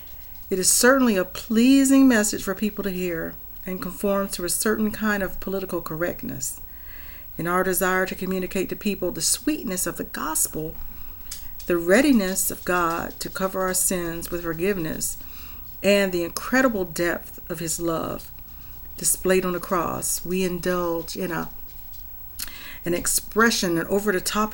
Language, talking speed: English, 145 wpm